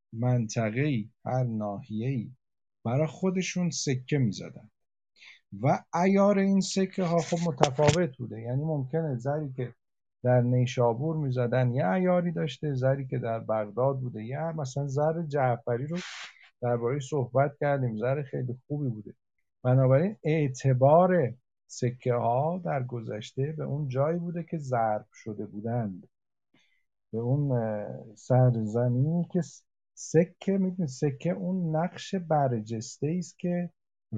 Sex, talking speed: male, 125 wpm